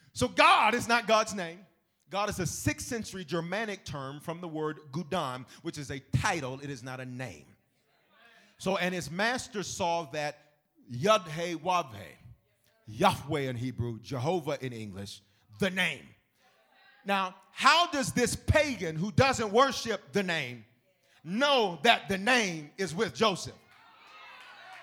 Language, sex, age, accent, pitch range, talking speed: English, male, 40-59, American, 170-275 Hz, 140 wpm